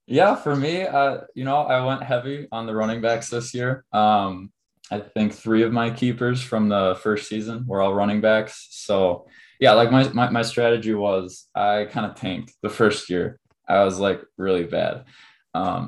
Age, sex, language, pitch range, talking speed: 20-39, male, English, 100-120 Hz, 195 wpm